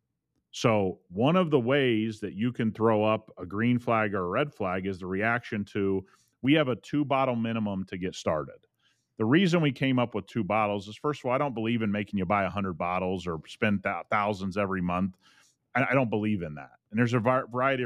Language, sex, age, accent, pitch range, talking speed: English, male, 40-59, American, 105-130 Hz, 220 wpm